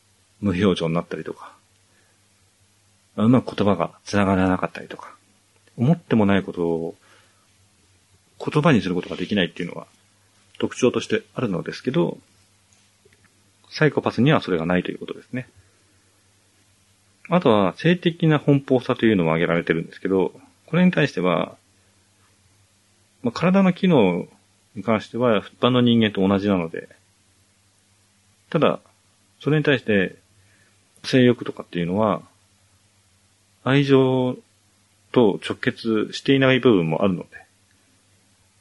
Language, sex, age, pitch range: Japanese, male, 40-59, 95-110 Hz